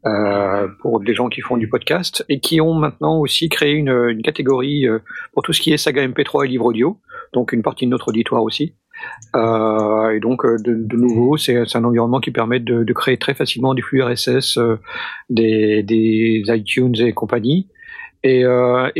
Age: 50-69